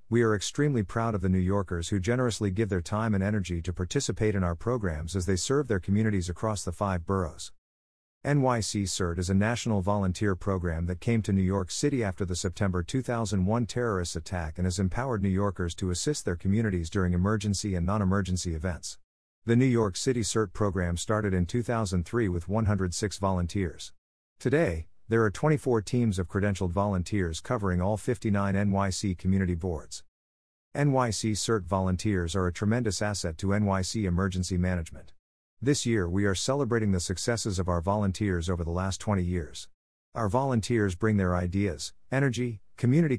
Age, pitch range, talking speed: 50-69, 90-110 Hz, 170 wpm